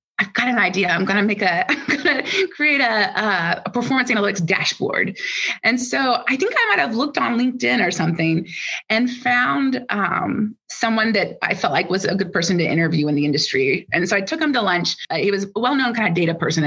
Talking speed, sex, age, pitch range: 225 wpm, female, 30-49, 185-270 Hz